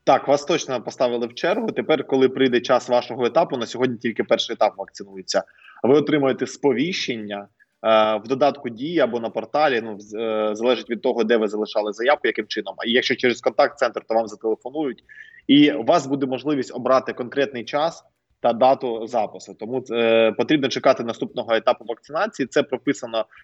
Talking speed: 175 wpm